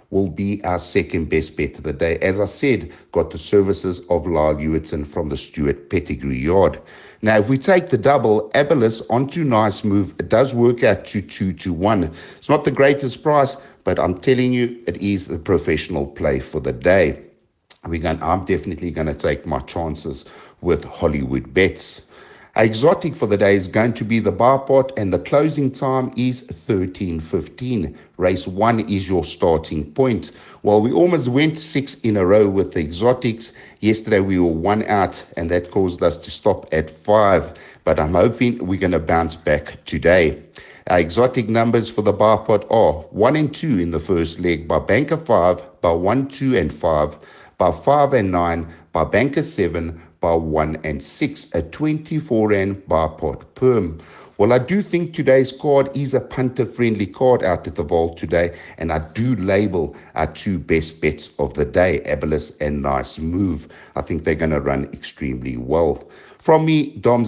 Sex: male